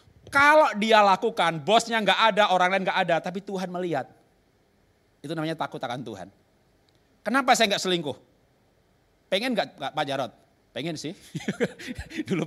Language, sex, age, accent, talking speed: Indonesian, male, 30-49, native, 140 wpm